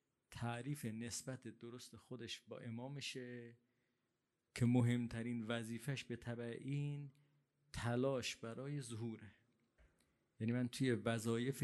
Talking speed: 100 wpm